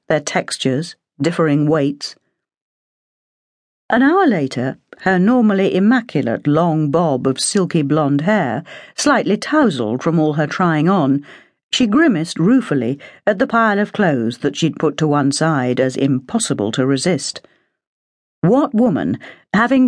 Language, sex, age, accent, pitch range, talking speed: English, female, 50-69, British, 145-240 Hz, 135 wpm